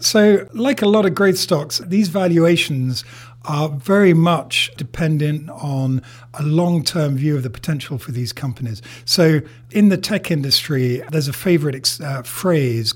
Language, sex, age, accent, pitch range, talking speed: English, male, 50-69, British, 125-160 Hz, 160 wpm